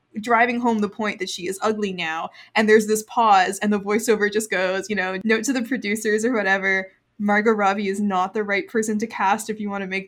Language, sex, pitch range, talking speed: English, female, 205-255 Hz, 240 wpm